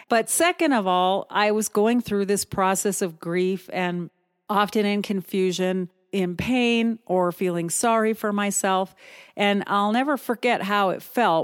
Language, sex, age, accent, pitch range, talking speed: English, female, 40-59, American, 185-245 Hz, 155 wpm